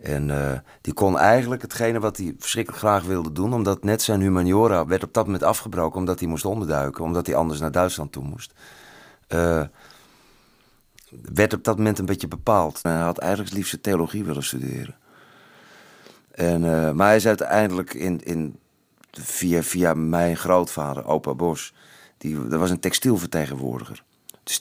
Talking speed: 155 wpm